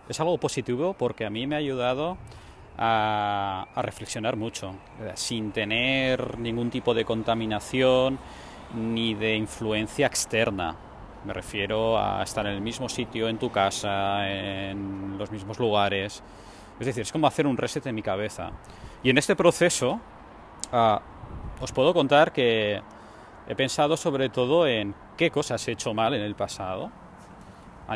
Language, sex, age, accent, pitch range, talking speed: Spanish, male, 20-39, Spanish, 105-130 Hz, 150 wpm